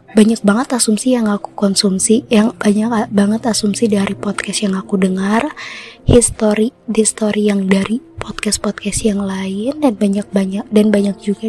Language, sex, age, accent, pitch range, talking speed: Indonesian, female, 20-39, native, 205-230 Hz, 145 wpm